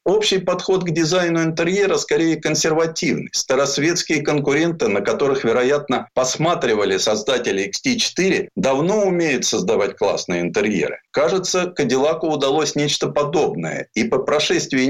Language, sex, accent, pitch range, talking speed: Russian, male, native, 140-190 Hz, 115 wpm